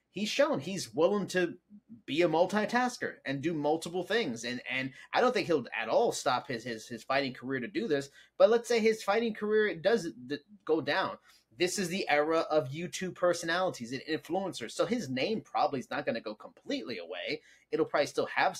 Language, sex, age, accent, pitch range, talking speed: English, male, 30-49, American, 135-180 Hz, 200 wpm